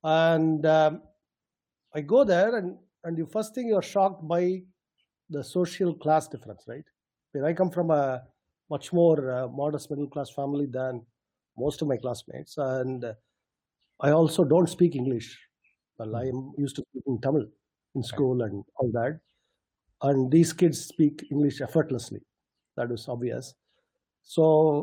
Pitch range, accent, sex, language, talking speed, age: 135-175 Hz, Indian, male, English, 150 wpm, 50-69